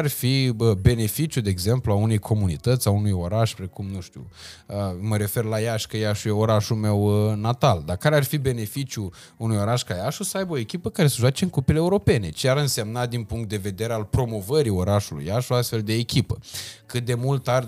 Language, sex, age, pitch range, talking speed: Romanian, male, 20-39, 105-140 Hz, 205 wpm